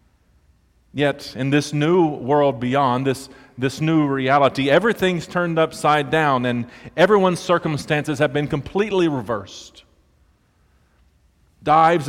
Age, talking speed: 40-59, 110 wpm